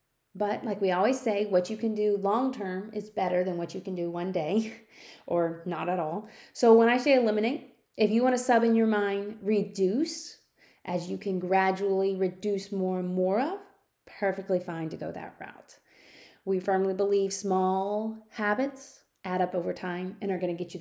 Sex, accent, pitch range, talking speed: female, American, 190-235 Hz, 190 wpm